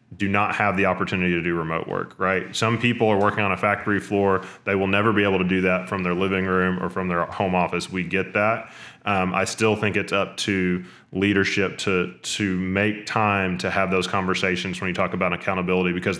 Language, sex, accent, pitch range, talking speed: English, male, American, 90-105 Hz, 220 wpm